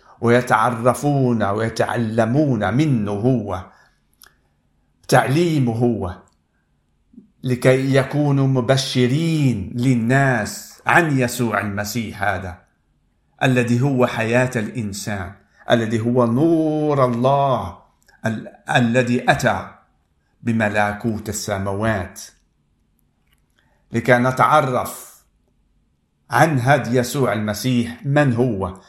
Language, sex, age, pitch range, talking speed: Arabic, male, 50-69, 105-135 Hz, 75 wpm